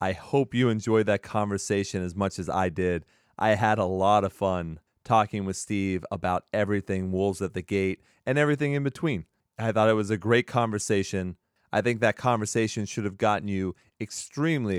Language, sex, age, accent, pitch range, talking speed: English, male, 30-49, American, 95-115 Hz, 185 wpm